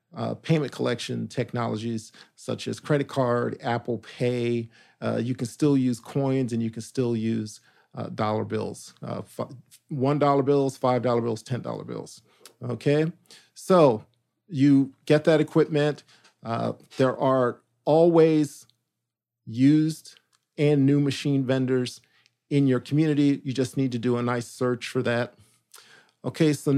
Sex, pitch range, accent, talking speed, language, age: male, 120-150 Hz, American, 135 wpm, English, 50-69